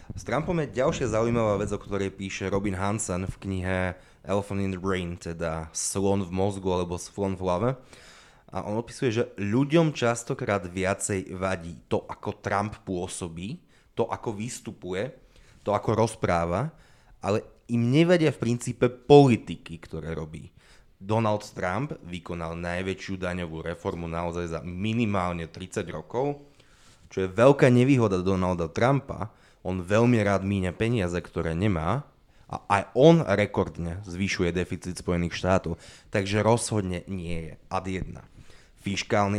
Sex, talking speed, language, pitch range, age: male, 135 wpm, Slovak, 90-115 Hz, 20-39